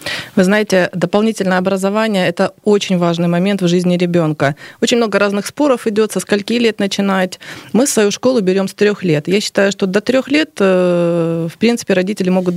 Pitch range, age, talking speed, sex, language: 180-215 Hz, 20-39, 180 wpm, female, Russian